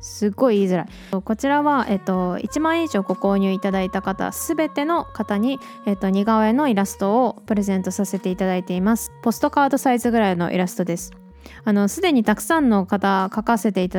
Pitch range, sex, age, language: 190-285 Hz, female, 20-39, Japanese